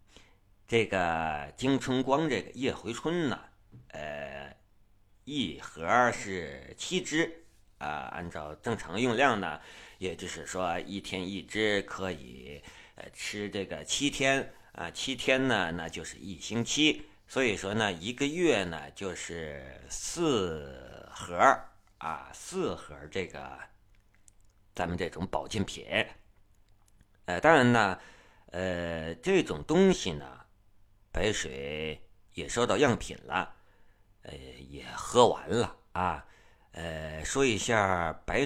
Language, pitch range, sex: Chinese, 80-105 Hz, male